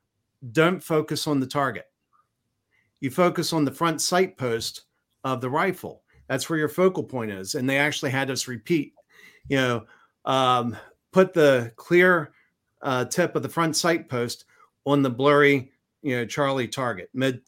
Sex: male